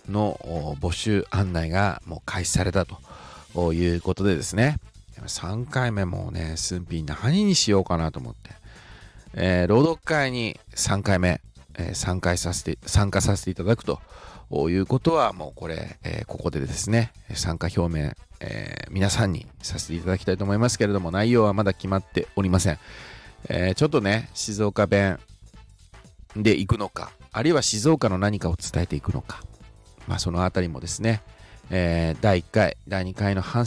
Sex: male